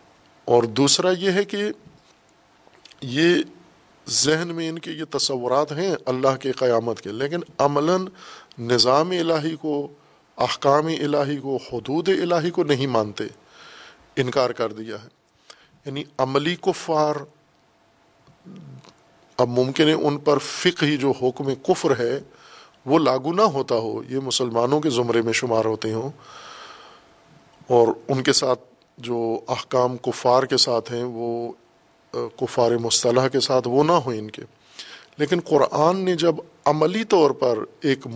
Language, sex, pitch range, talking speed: Urdu, male, 120-155 Hz, 140 wpm